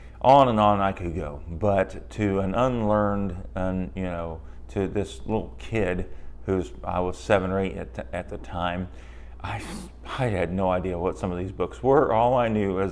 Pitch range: 80-100 Hz